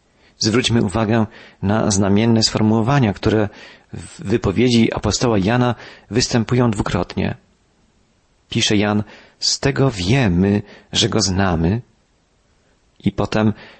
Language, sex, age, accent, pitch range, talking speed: Polish, male, 40-59, native, 105-140 Hz, 95 wpm